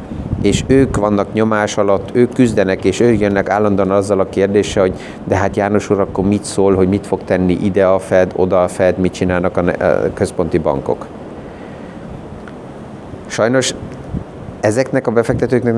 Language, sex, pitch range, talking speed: Hungarian, male, 95-105 Hz, 155 wpm